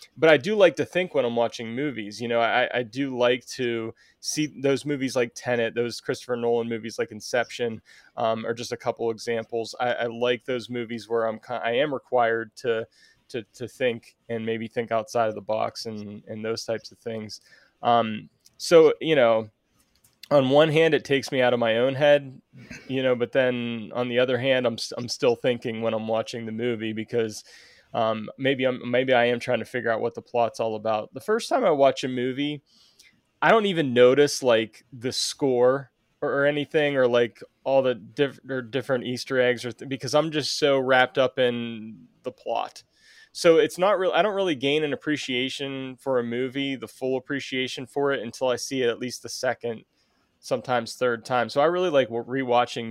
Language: English